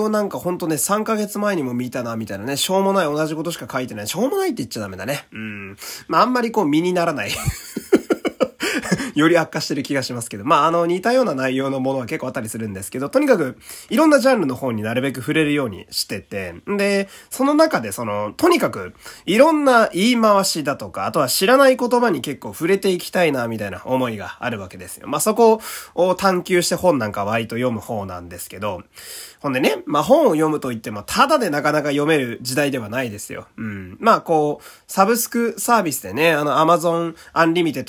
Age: 20-39